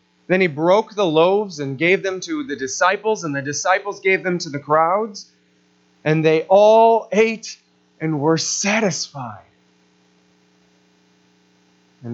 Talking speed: 135 wpm